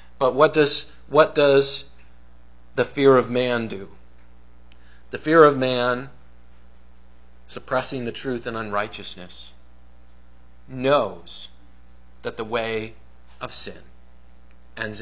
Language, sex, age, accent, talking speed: English, male, 40-59, American, 105 wpm